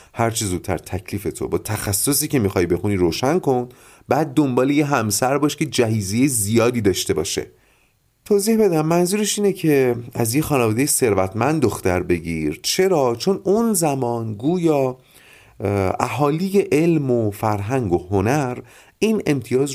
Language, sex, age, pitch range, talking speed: Persian, male, 30-49, 100-145 Hz, 135 wpm